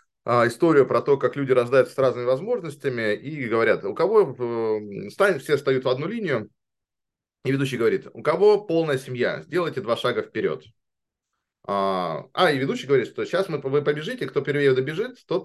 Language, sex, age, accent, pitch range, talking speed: Russian, male, 20-39, native, 130-170 Hz, 165 wpm